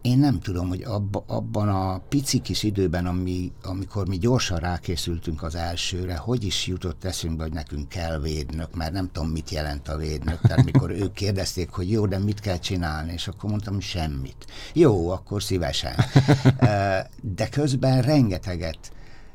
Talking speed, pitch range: 160 wpm, 85-110 Hz